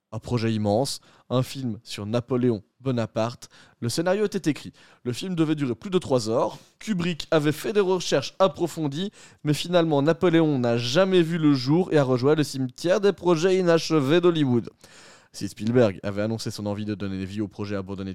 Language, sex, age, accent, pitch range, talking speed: French, male, 20-39, French, 120-175 Hz, 185 wpm